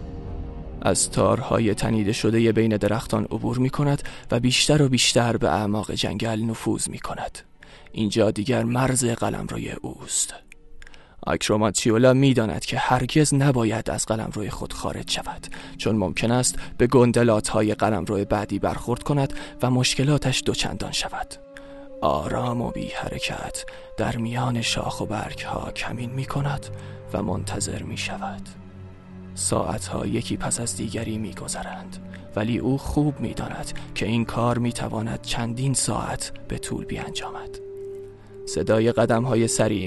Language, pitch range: Persian, 105-130 Hz